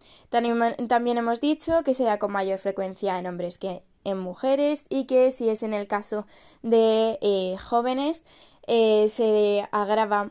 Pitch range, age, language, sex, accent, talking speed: 200-240 Hz, 10-29, Spanish, female, Spanish, 155 wpm